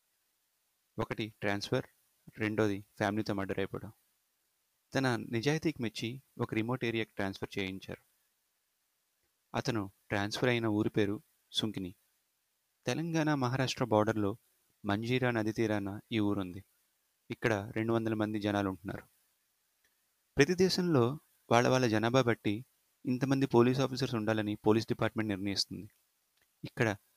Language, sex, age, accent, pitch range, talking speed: Telugu, male, 30-49, native, 105-130 Hz, 105 wpm